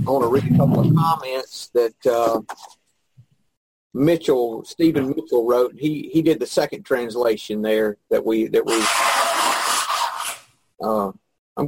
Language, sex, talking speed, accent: English, male, 140 wpm, American